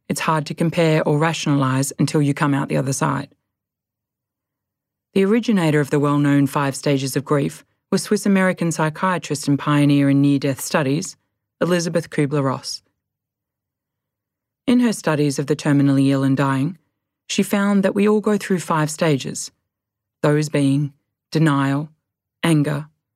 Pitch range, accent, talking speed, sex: 140-175 Hz, Australian, 140 wpm, female